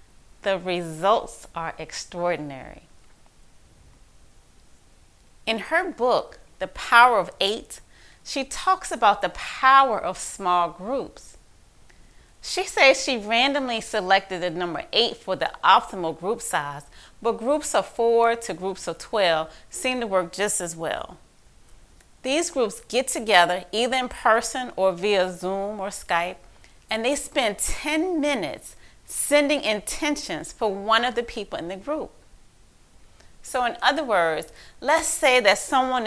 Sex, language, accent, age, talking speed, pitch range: female, English, American, 30-49, 135 wpm, 175-255 Hz